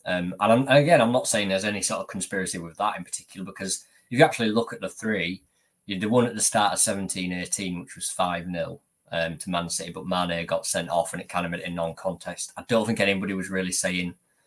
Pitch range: 90-100 Hz